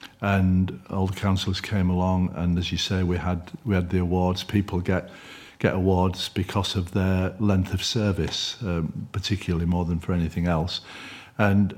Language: English